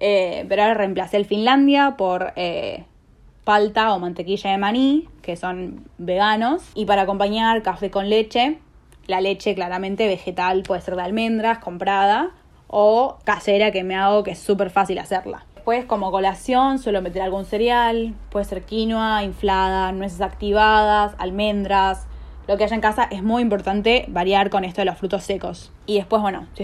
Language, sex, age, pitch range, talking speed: Spanish, female, 10-29, 195-220 Hz, 165 wpm